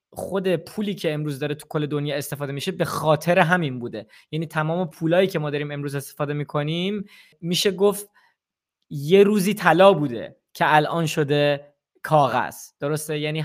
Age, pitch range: 20-39, 150-205 Hz